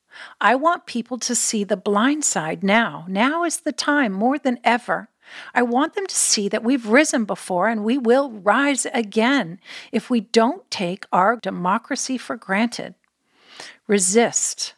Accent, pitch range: American, 200-250 Hz